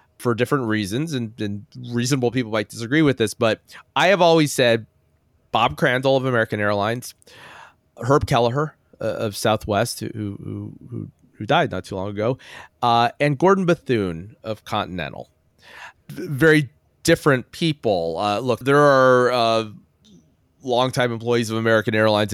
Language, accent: English, American